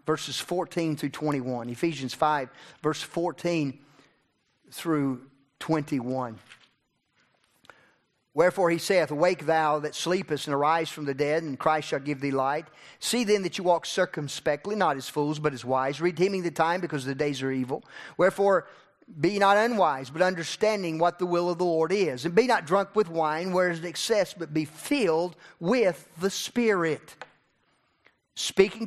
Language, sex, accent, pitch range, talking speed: English, male, American, 155-195 Hz, 160 wpm